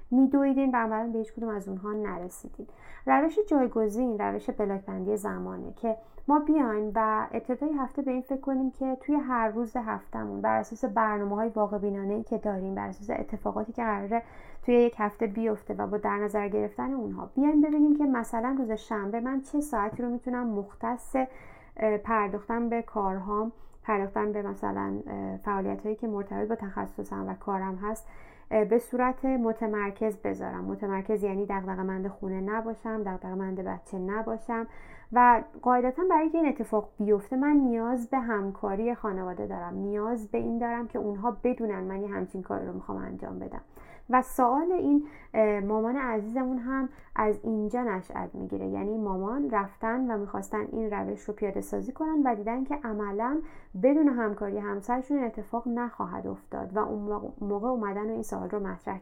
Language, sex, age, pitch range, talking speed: Persian, female, 30-49, 205-250 Hz, 160 wpm